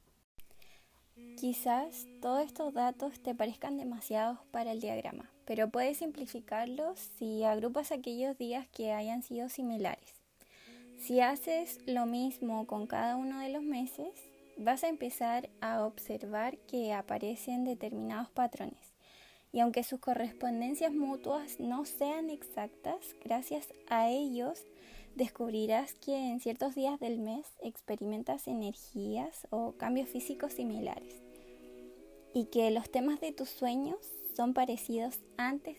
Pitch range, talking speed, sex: 220-275 Hz, 125 wpm, female